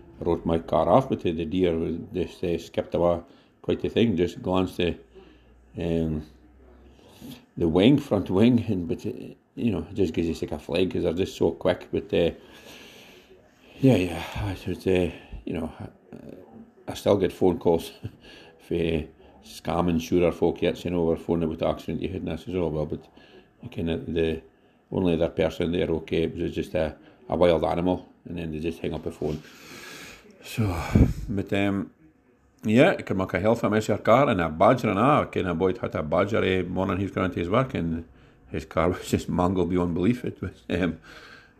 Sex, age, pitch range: male, 60-79, 80-95 Hz